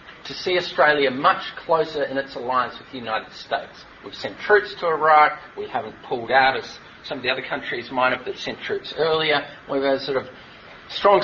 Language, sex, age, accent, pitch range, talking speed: English, male, 40-59, Australian, 135-175 Hz, 210 wpm